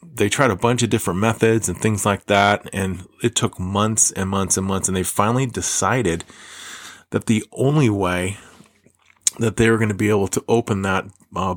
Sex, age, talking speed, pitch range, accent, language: male, 30-49, 195 wpm, 95-115 Hz, American, English